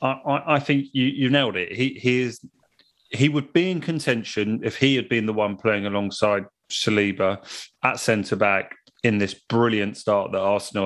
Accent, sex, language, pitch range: British, male, English, 95-115 Hz